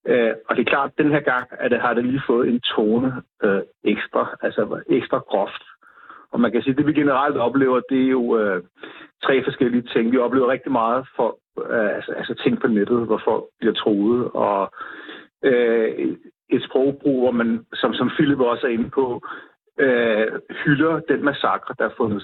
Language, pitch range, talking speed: Danish, 120-150 Hz, 190 wpm